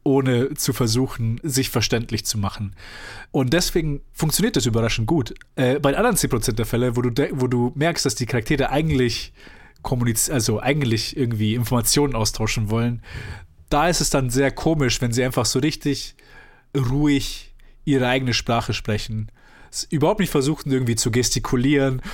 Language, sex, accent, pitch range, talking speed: German, male, German, 115-140 Hz, 165 wpm